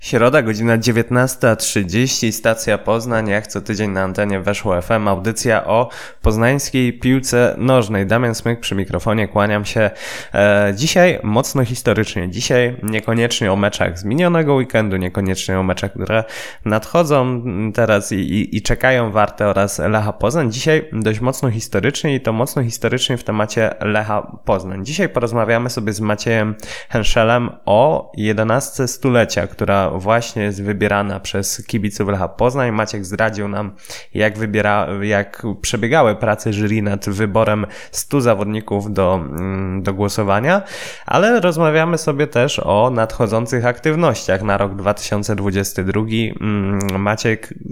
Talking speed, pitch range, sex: 130 wpm, 100-120 Hz, male